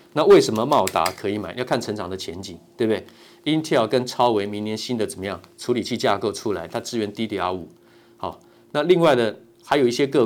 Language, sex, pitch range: Chinese, male, 105-145 Hz